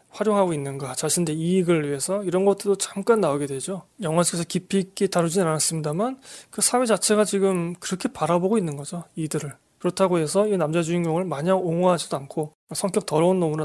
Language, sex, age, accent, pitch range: Korean, male, 20-39, native, 160-210 Hz